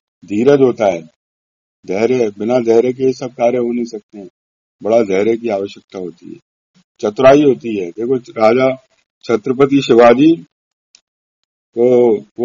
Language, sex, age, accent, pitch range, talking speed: Hindi, male, 50-69, native, 115-145 Hz, 135 wpm